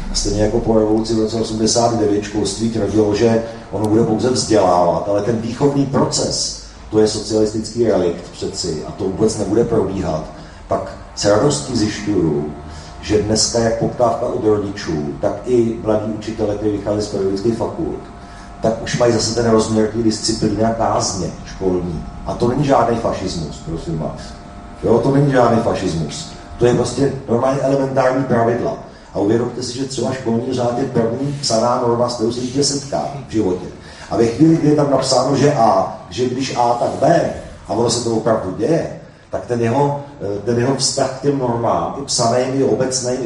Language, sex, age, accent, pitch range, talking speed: Czech, male, 40-59, native, 105-130 Hz, 170 wpm